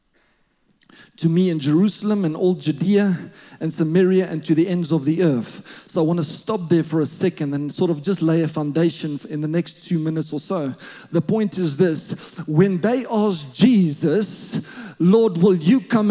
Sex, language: male, English